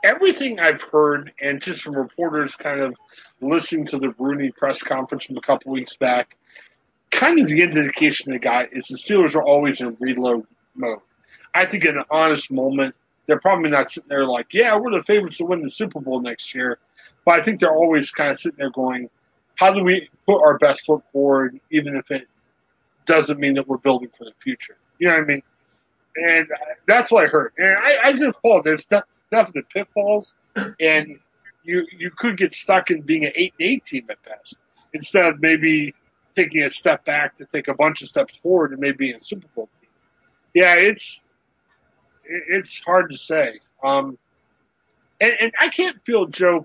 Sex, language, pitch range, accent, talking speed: male, English, 140-185 Hz, American, 195 wpm